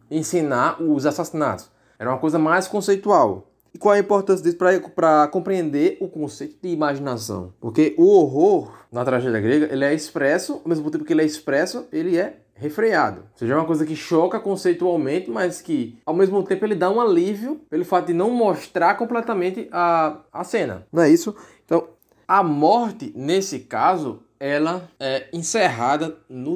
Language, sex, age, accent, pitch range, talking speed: Portuguese, male, 20-39, Brazilian, 145-190 Hz, 170 wpm